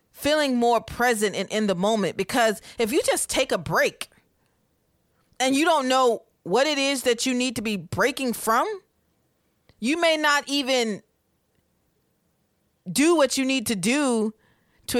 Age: 30-49